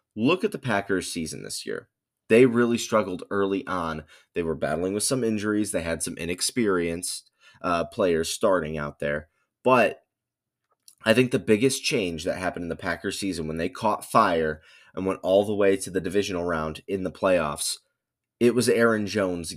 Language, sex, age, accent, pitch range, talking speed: English, male, 20-39, American, 90-110 Hz, 180 wpm